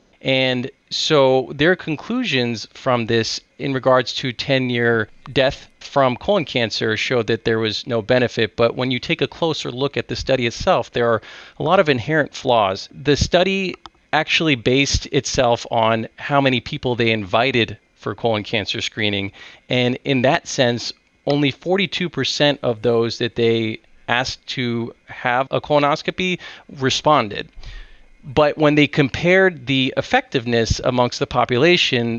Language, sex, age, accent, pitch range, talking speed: English, male, 30-49, American, 115-140 Hz, 145 wpm